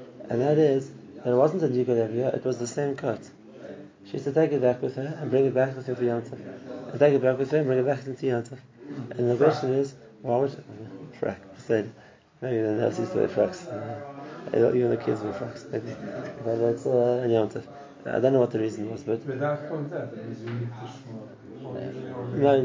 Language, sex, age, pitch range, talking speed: English, male, 20-39, 115-135 Hz, 185 wpm